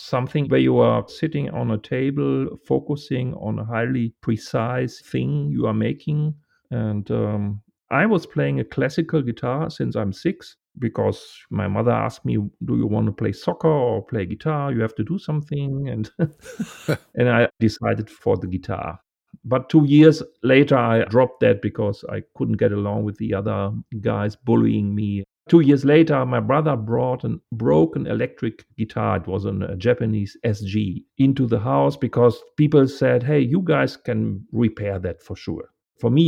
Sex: male